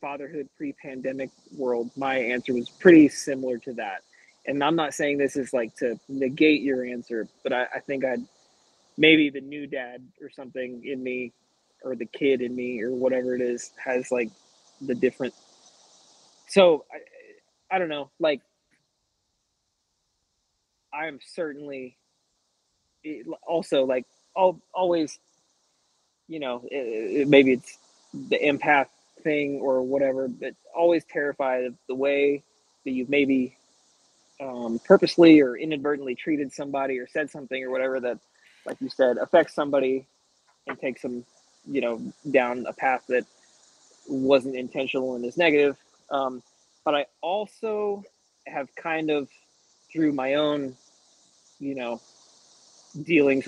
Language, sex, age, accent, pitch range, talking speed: English, male, 20-39, American, 125-150 Hz, 135 wpm